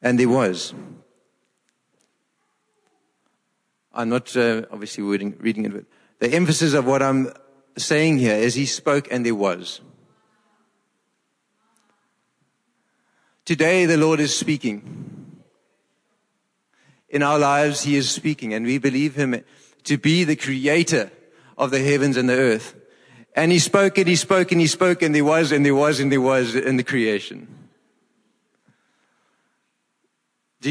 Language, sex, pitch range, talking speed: English, male, 130-170 Hz, 140 wpm